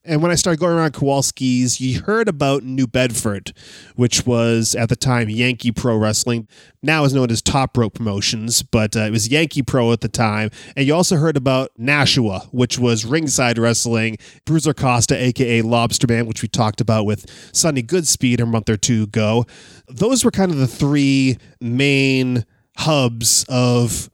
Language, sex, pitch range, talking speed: English, male, 115-140 Hz, 180 wpm